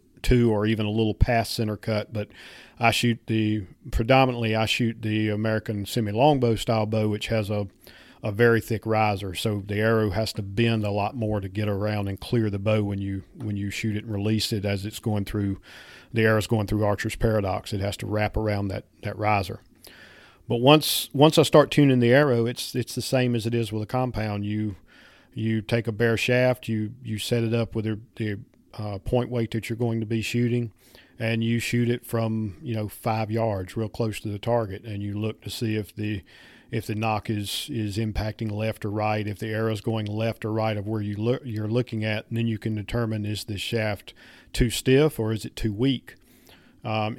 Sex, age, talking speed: male, 40-59, 220 wpm